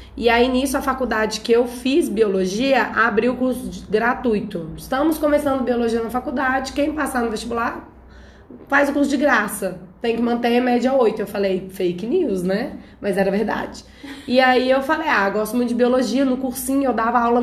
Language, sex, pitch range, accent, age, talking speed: Portuguese, female, 200-250 Hz, Brazilian, 20-39, 195 wpm